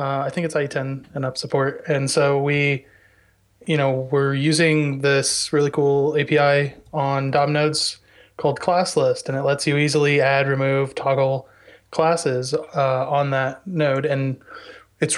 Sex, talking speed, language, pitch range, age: male, 160 wpm, English, 135-155 Hz, 20-39